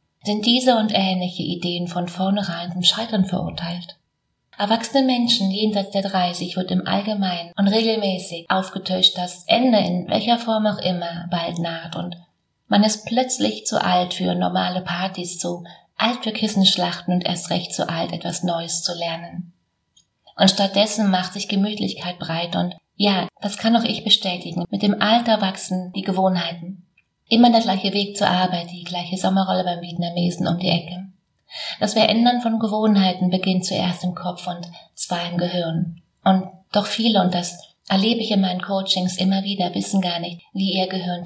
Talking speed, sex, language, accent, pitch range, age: 165 wpm, female, German, German, 175-205 Hz, 30-49